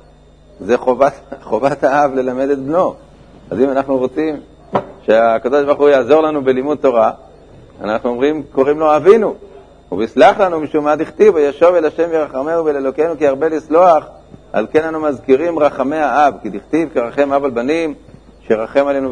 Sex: male